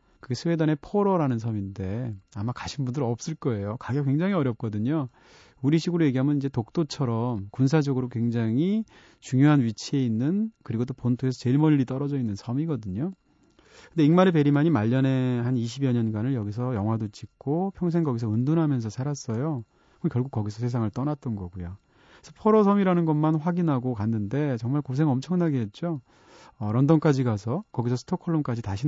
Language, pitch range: Korean, 115-160 Hz